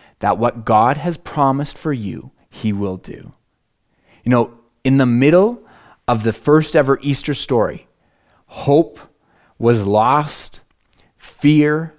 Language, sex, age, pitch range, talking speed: English, male, 30-49, 115-140 Hz, 125 wpm